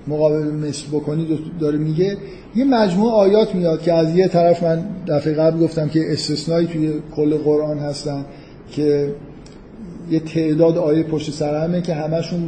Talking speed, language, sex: 150 wpm, Persian, male